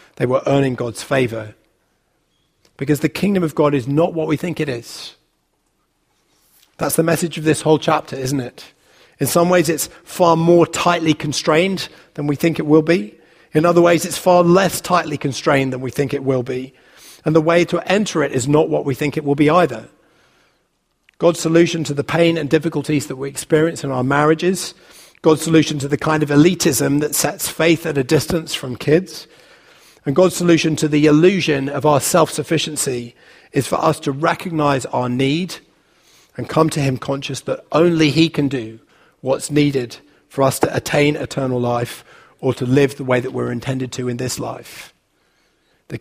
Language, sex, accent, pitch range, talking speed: English, male, British, 135-165 Hz, 190 wpm